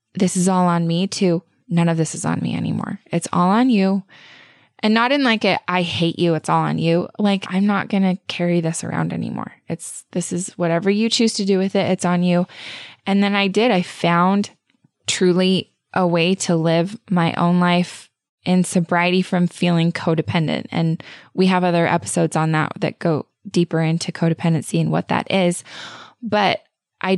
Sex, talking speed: female, 195 wpm